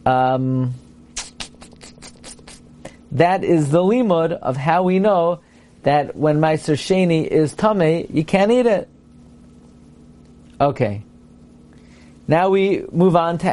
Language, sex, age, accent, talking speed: English, male, 40-59, American, 110 wpm